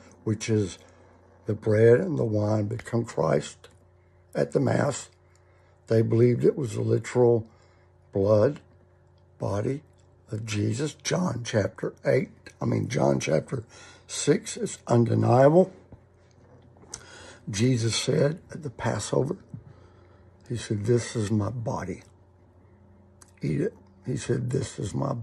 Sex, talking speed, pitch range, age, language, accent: male, 120 wpm, 90-120 Hz, 60-79, English, American